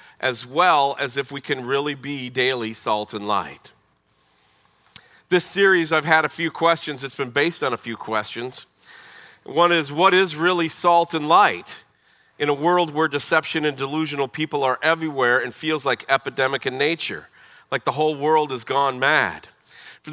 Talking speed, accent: 175 wpm, American